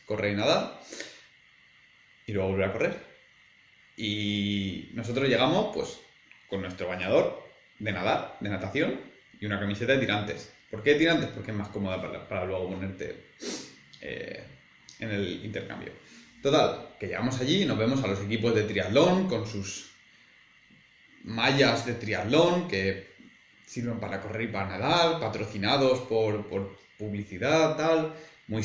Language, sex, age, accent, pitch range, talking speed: Spanish, male, 20-39, Spanish, 105-150 Hz, 145 wpm